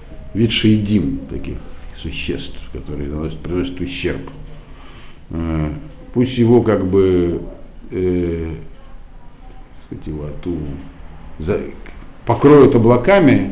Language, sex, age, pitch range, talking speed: Russian, male, 50-69, 85-120 Hz, 75 wpm